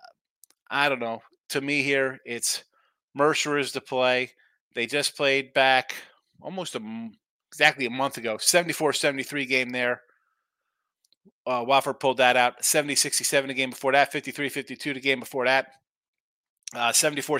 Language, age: English, 30-49